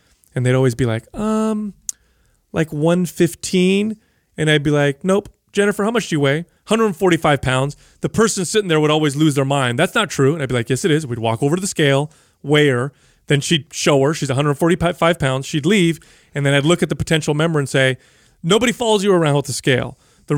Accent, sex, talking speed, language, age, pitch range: American, male, 220 wpm, English, 30-49, 135-185 Hz